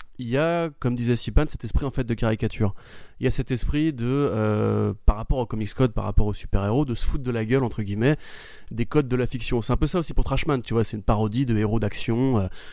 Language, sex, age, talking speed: French, male, 20-39, 275 wpm